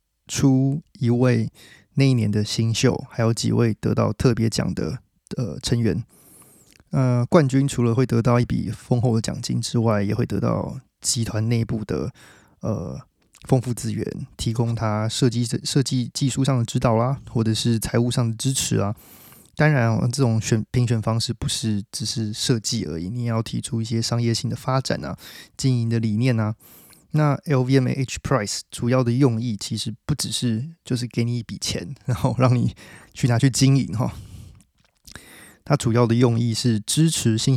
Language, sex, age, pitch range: Chinese, male, 20-39, 110-130 Hz